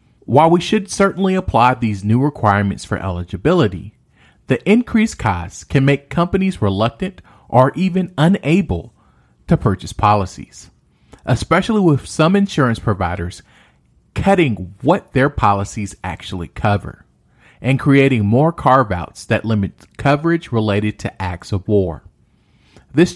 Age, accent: 40-59, American